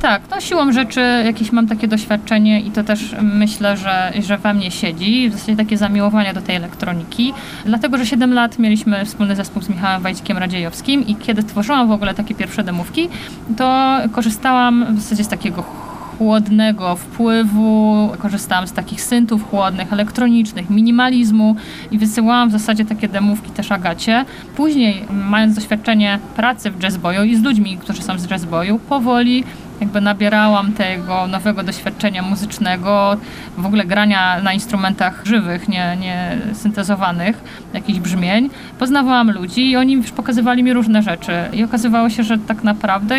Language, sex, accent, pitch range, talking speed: Polish, female, native, 195-230 Hz, 155 wpm